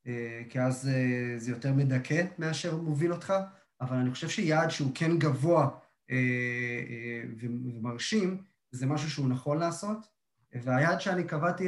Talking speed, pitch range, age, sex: 150 wpm, 130-165 Hz, 30-49, male